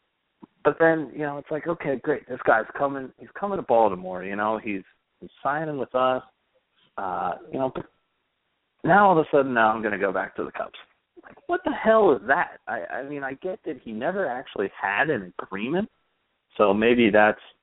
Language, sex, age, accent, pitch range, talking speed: English, male, 40-59, American, 95-145 Hz, 205 wpm